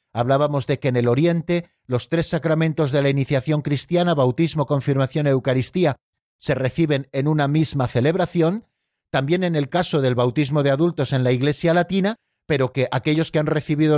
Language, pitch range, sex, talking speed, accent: Spanish, 130-160 Hz, male, 175 wpm, Spanish